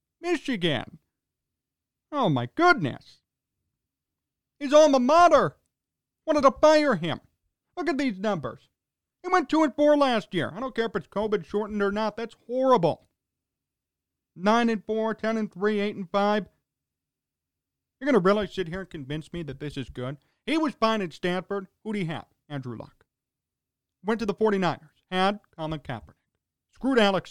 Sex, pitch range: male, 165-235 Hz